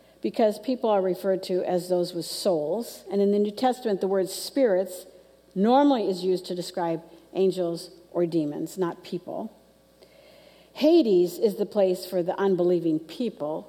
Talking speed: 155 wpm